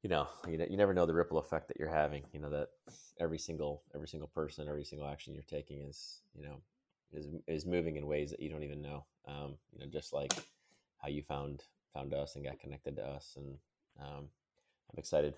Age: 20-39